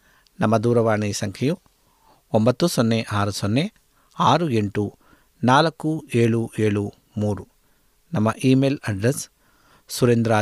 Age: 50-69